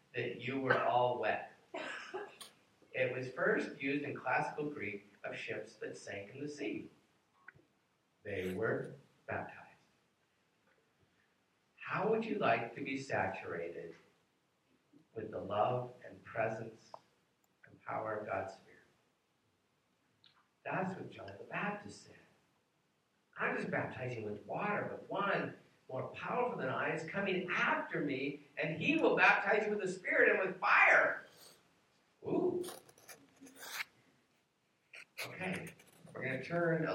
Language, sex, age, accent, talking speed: English, male, 50-69, American, 125 wpm